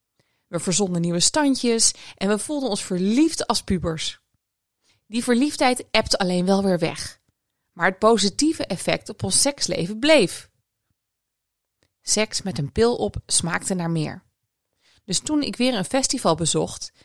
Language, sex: Dutch, female